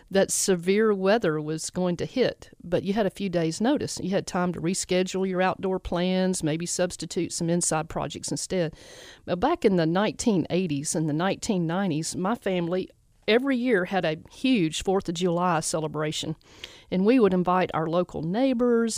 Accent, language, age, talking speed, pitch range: American, English, 40-59, 170 wpm, 170-205 Hz